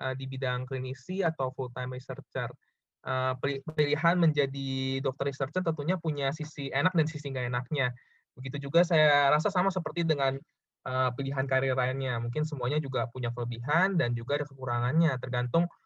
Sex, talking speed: male, 145 wpm